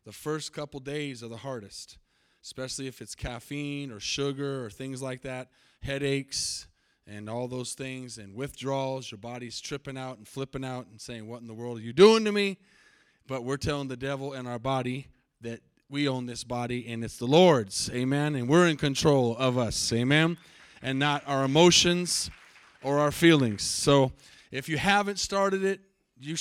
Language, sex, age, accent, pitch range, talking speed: English, male, 30-49, American, 130-160 Hz, 185 wpm